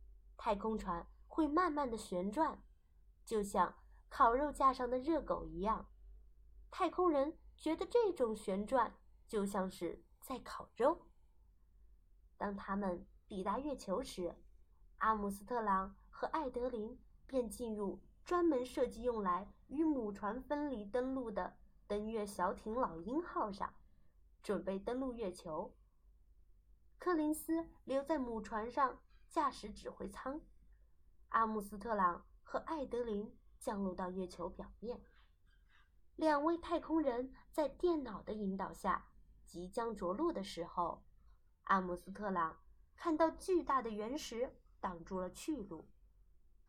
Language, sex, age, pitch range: Chinese, female, 20-39, 190-295 Hz